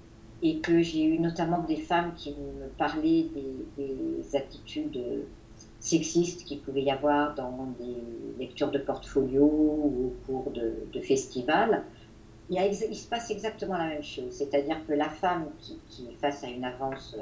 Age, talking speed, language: 50-69, 165 wpm, French